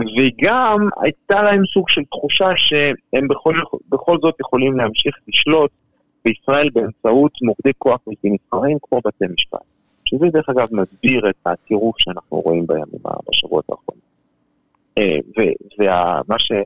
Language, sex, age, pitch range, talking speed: Hebrew, male, 50-69, 100-145 Hz, 120 wpm